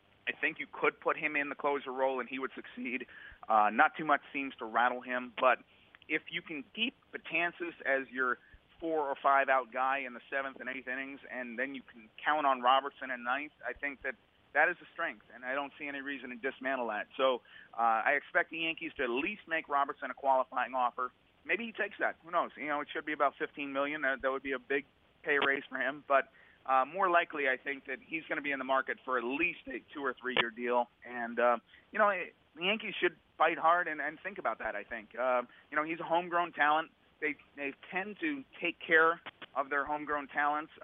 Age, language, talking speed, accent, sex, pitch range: 30-49, English, 235 wpm, American, male, 130-155 Hz